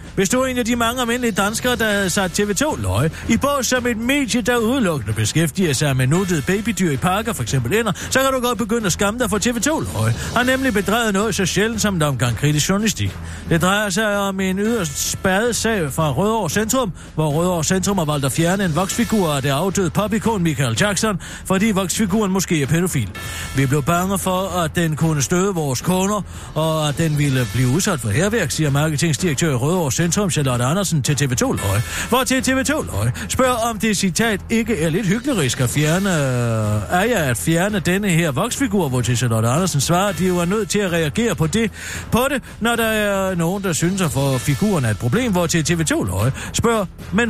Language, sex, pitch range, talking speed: Danish, male, 150-215 Hz, 205 wpm